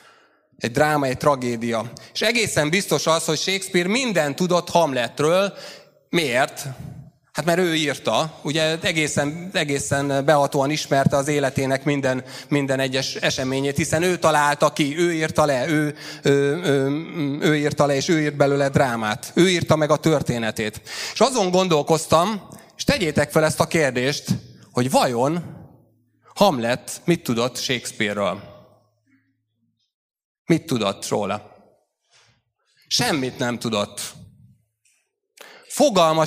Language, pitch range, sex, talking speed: Hungarian, 130-165 Hz, male, 115 wpm